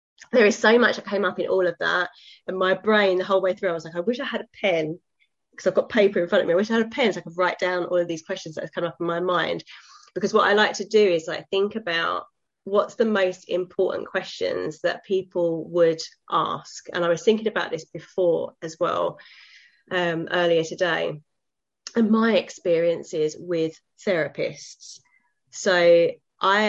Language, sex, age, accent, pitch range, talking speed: English, female, 20-39, British, 170-225 Hz, 215 wpm